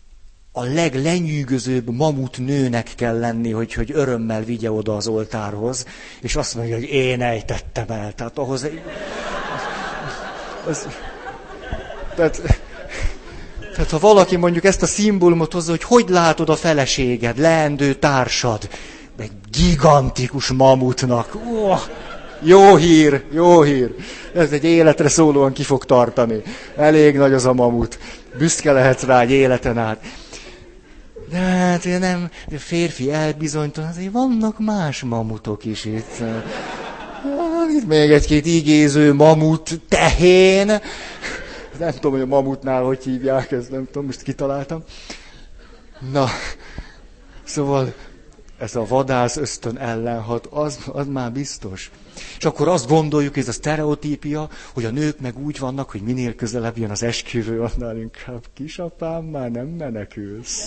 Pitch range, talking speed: 120-160 Hz, 130 wpm